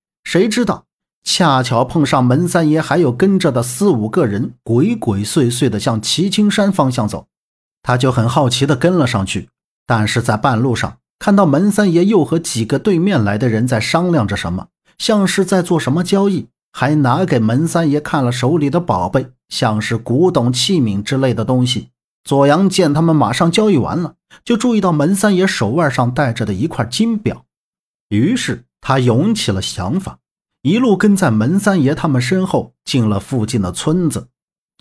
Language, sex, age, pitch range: Chinese, male, 50-69, 120-175 Hz